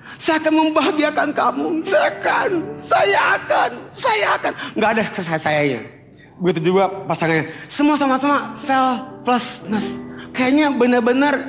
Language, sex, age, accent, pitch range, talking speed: Indonesian, male, 30-49, native, 205-295 Hz, 115 wpm